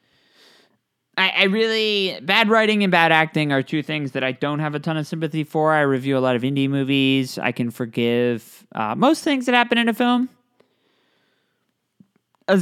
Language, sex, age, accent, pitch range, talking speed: English, male, 20-39, American, 125-180 Hz, 185 wpm